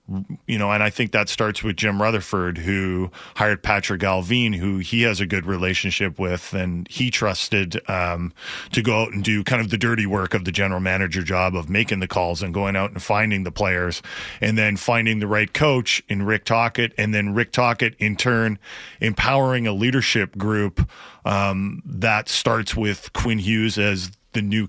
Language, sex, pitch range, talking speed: English, male, 100-120 Hz, 190 wpm